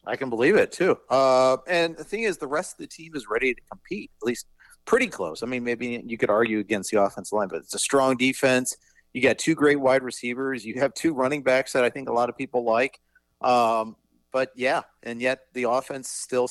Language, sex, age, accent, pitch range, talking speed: English, male, 40-59, American, 110-155 Hz, 235 wpm